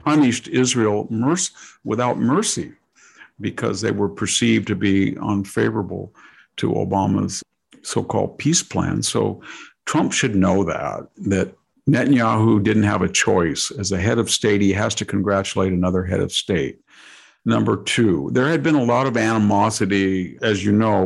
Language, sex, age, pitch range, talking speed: English, male, 50-69, 95-115 Hz, 150 wpm